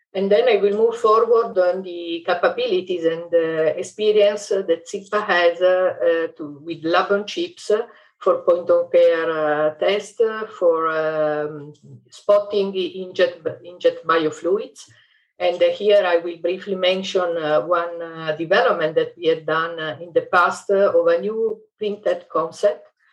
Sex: female